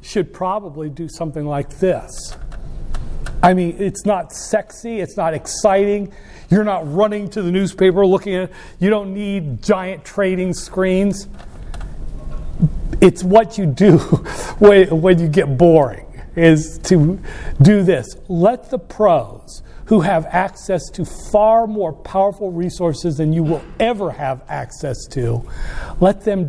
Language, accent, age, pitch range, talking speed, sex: English, American, 40-59, 155-195 Hz, 135 wpm, male